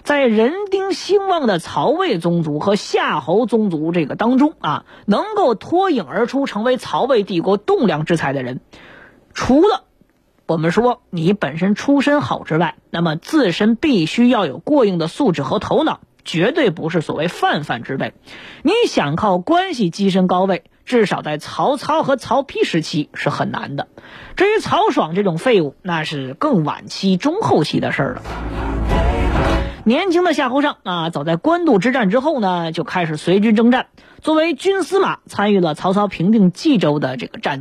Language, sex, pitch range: Chinese, female, 175-275 Hz